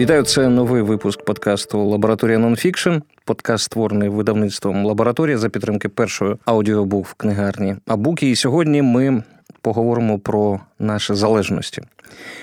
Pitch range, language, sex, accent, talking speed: 105-125 Hz, Ukrainian, male, native, 120 wpm